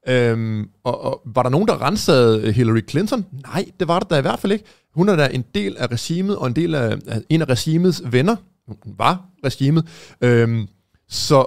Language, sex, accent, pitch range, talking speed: Danish, male, native, 125-175 Hz, 205 wpm